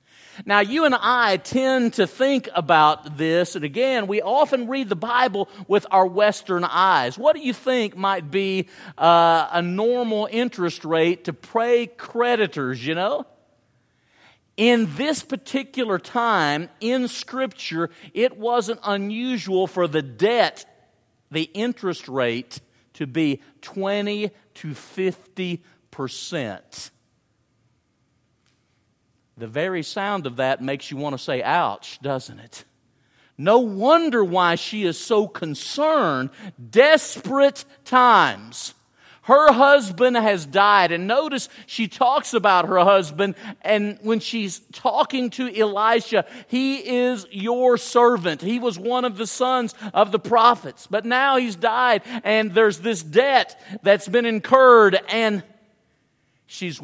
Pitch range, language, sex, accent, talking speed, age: 160-240 Hz, English, male, American, 130 wpm, 50-69